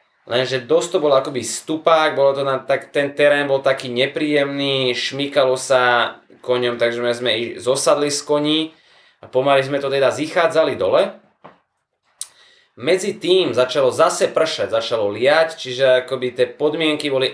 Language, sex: Slovak, male